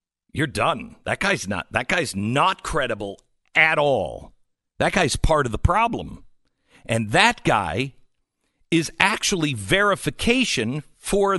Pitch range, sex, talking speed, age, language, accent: 125-195 Hz, male, 125 wpm, 50-69, English, American